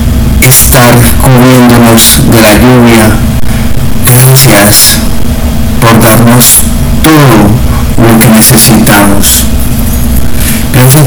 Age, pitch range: 50-69, 110-120 Hz